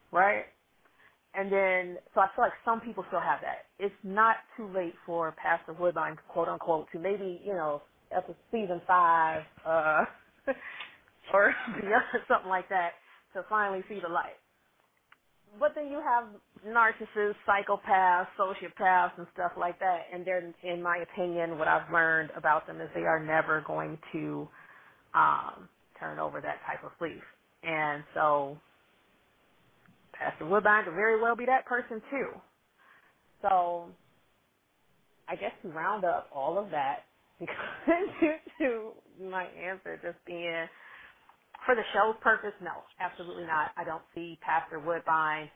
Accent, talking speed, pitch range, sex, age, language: American, 150 wpm, 160-200 Hz, female, 30-49, English